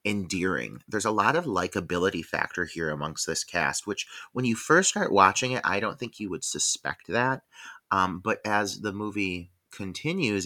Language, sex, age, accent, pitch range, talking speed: English, male, 30-49, American, 95-135 Hz, 180 wpm